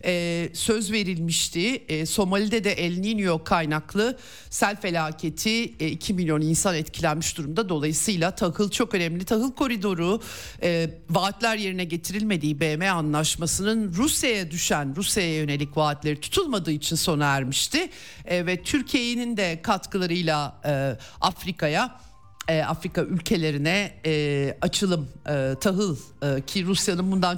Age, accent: 50-69, native